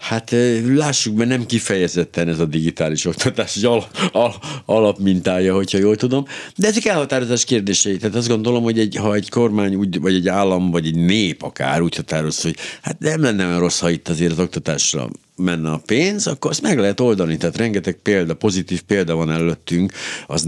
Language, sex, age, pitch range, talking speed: Hungarian, male, 60-79, 80-110 Hz, 190 wpm